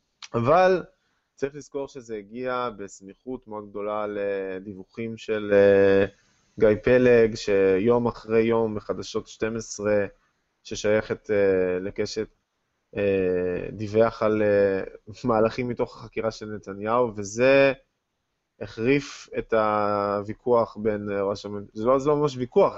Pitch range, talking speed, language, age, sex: 100-125 Hz, 105 wpm, Hebrew, 20-39, male